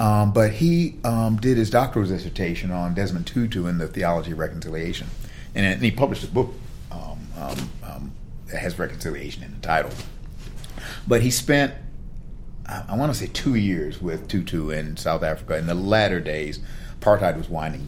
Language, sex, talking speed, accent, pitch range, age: English, male, 175 wpm, American, 85-100 Hz, 50-69